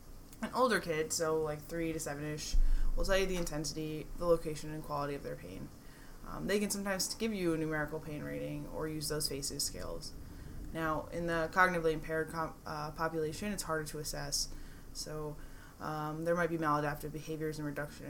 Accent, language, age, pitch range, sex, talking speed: American, English, 20-39, 150-170 Hz, female, 180 wpm